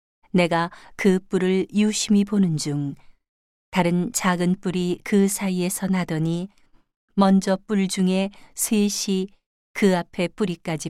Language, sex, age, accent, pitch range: Korean, female, 40-59, native, 170-195 Hz